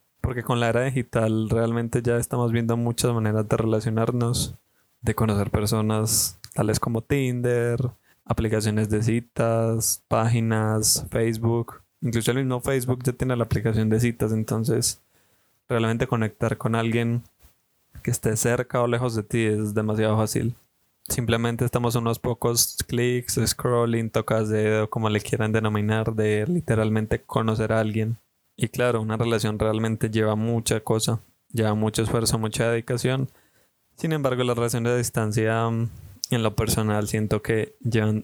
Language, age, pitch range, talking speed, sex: Spanish, 20-39, 110-120 Hz, 145 wpm, male